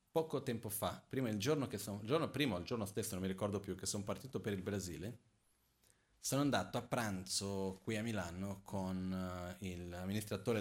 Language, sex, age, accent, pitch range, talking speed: Italian, male, 30-49, native, 95-120 Hz, 190 wpm